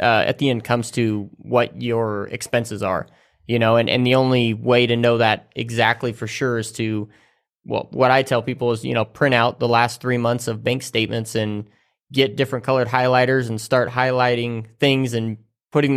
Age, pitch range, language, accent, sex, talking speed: 20-39, 115-135 Hz, English, American, male, 200 wpm